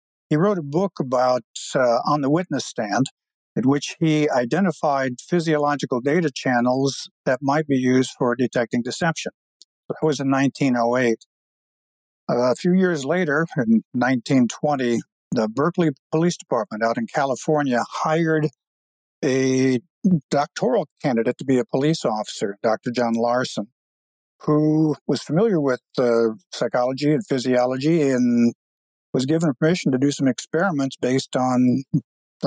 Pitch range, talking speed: 120-150 Hz, 135 wpm